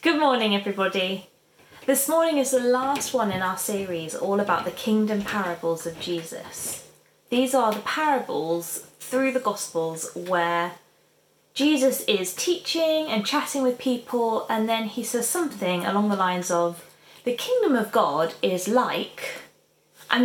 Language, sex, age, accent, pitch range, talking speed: English, female, 20-39, British, 175-240 Hz, 150 wpm